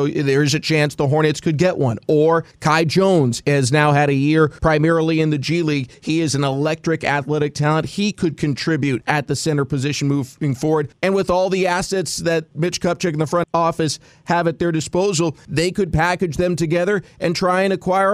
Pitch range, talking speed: 150-180 Hz, 205 wpm